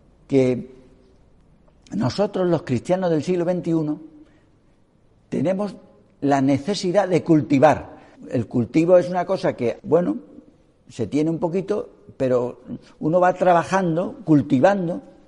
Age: 60-79